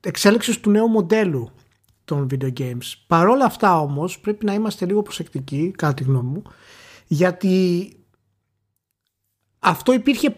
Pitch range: 140-205 Hz